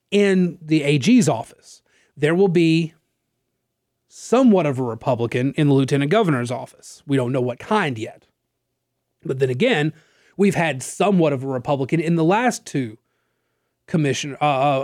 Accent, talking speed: American, 150 wpm